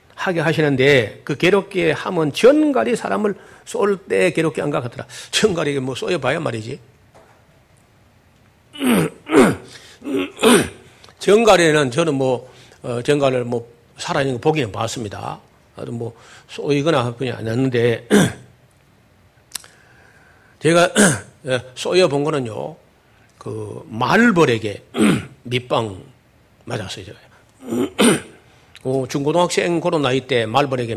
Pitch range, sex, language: 120-165 Hz, male, Korean